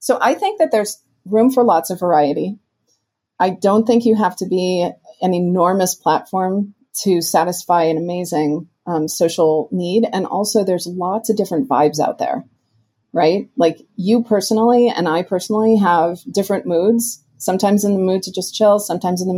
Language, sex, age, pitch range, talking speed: English, female, 30-49, 160-205 Hz, 175 wpm